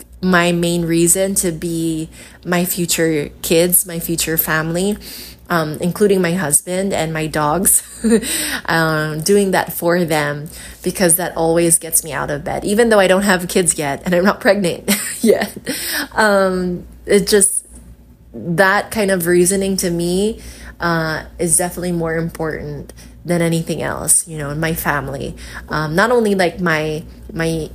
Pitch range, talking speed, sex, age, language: 155-195 Hz, 155 wpm, female, 20-39, English